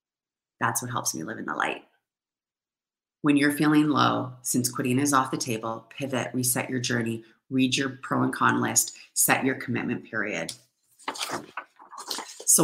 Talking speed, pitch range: 155 wpm, 125-150 Hz